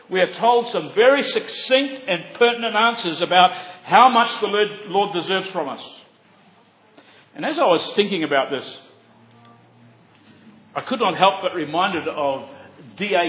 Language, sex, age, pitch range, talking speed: English, male, 50-69, 165-240 Hz, 145 wpm